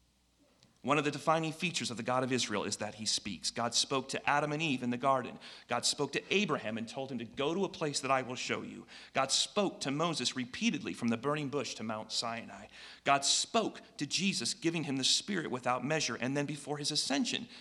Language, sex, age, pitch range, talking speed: English, male, 40-59, 115-155 Hz, 230 wpm